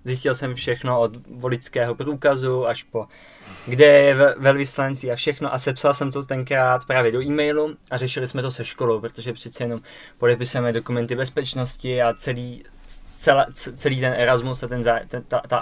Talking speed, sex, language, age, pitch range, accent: 175 wpm, male, Czech, 20-39, 125-140 Hz, native